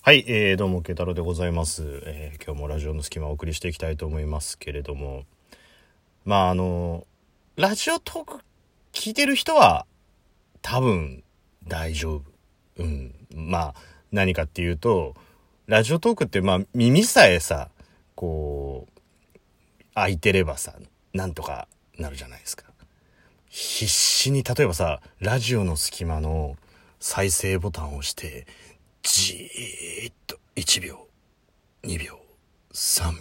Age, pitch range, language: 40-59, 80-125 Hz, Japanese